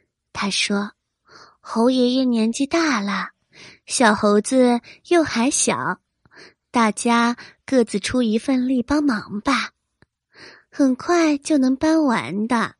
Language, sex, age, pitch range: Chinese, female, 20-39, 220-295 Hz